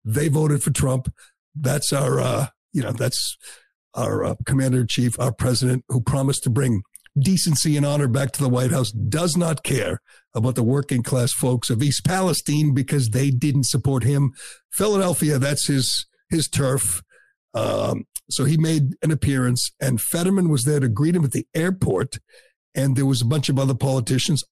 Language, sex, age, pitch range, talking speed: English, male, 50-69, 130-160 Hz, 180 wpm